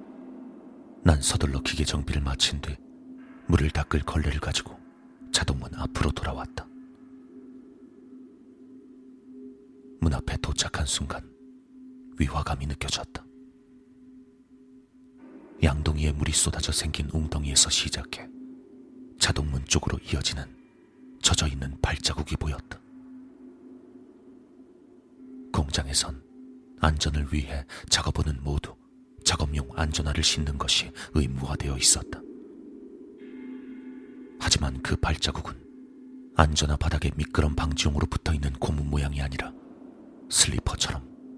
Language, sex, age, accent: Korean, male, 40-59, native